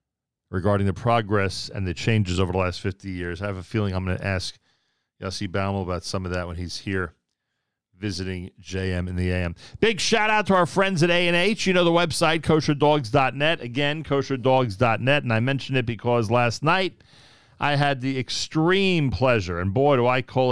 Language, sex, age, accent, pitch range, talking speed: English, male, 40-59, American, 95-130 Hz, 185 wpm